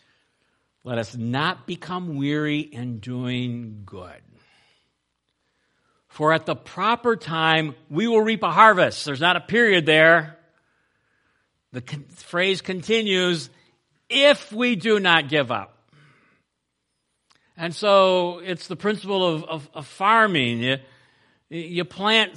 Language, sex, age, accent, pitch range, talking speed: English, male, 60-79, American, 115-180 Hz, 120 wpm